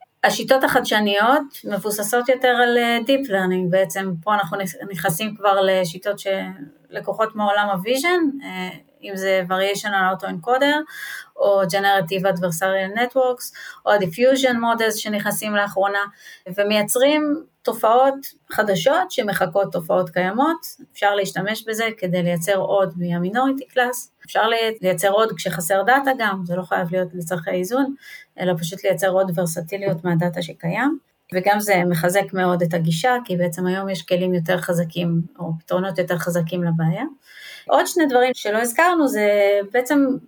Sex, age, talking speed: female, 30-49, 130 wpm